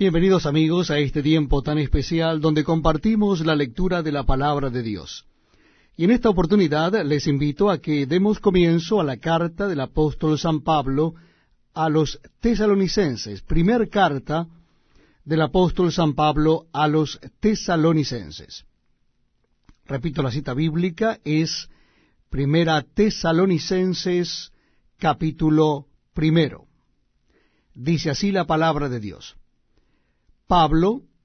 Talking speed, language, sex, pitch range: 115 wpm, Spanish, male, 150-185 Hz